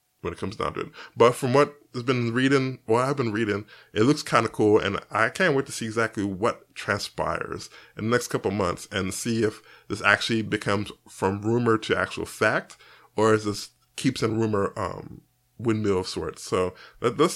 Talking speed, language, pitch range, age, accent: 200 wpm, English, 105-145 Hz, 20-39, American